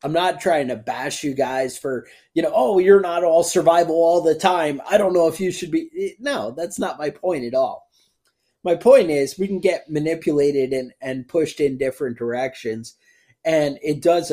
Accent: American